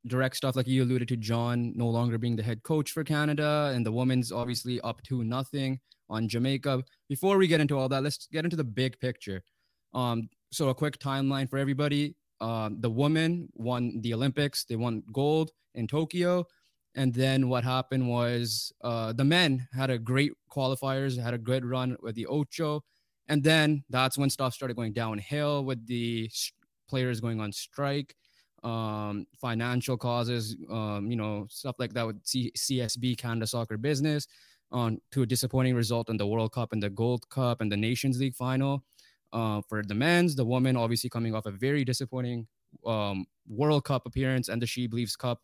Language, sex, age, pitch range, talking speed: English, male, 20-39, 115-140 Hz, 190 wpm